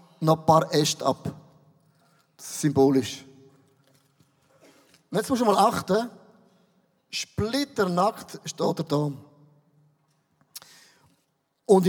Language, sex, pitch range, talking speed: German, male, 155-190 Hz, 100 wpm